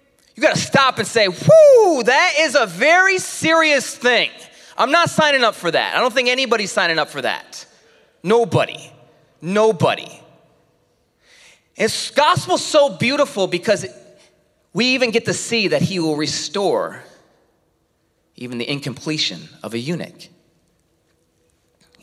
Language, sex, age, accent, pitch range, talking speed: English, male, 30-49, American, 150-230 Hz, 135 wpm